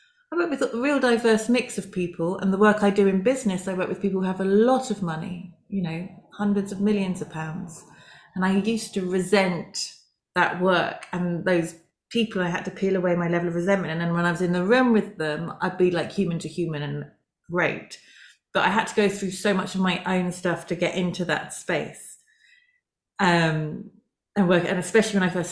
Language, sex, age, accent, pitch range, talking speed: English, female, 30-49, British, 165-200 Hz, 220 wpm